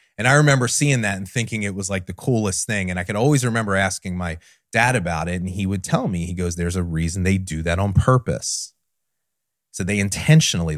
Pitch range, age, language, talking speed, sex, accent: 90-120 Hz, 30-49, English, 230 wpm, male, American